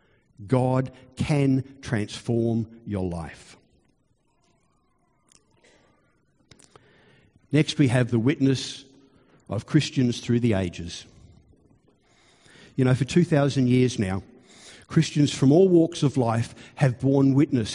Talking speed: 100 wpm